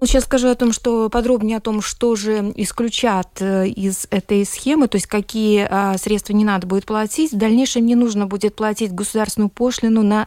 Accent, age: native, 20-39